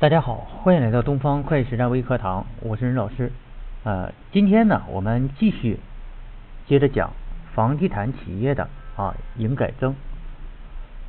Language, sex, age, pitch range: Chinese, male, 50-69, 115-155 Hz